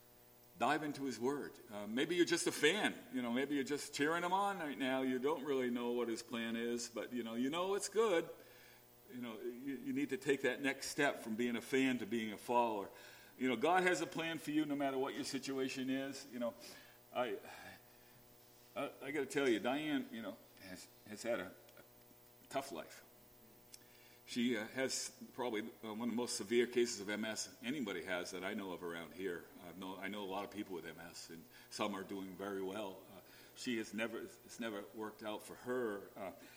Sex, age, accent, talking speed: male, 50-69, American, 210 wpm